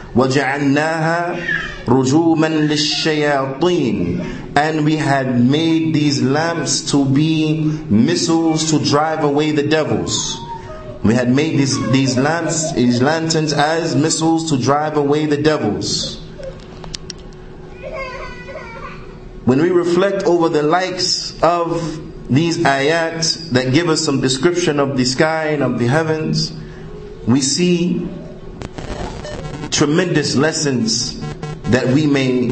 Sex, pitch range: male, 135-160 Hz